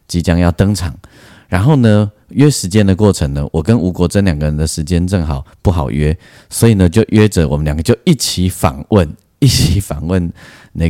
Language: Chinese